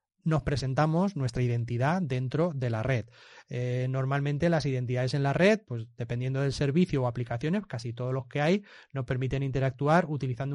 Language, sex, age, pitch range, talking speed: Spanish, male, 30-49, 125-145 Hz, 170 wpm